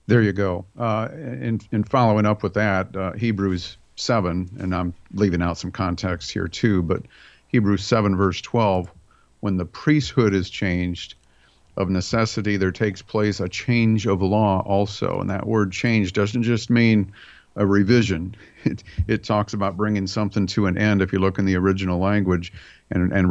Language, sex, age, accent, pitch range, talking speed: English, male, 50-69, American, 95-110 Hz, 180 wpm